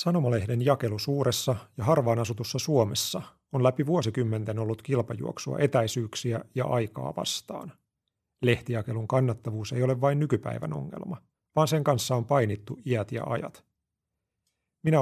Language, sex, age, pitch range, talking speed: Finnish, male, 40-59, 115-140 Hz, 130 wpm